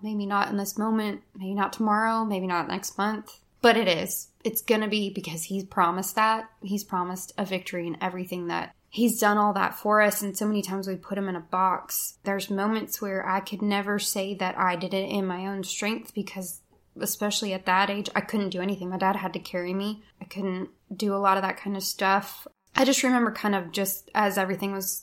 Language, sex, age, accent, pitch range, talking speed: English, female, 10-29, American, 190-215 Hz, 230 wpm